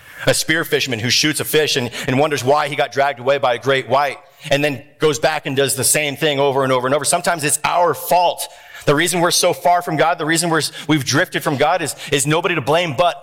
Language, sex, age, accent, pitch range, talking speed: English, male, 40-59, American, 145-215 Hz, 270 wpm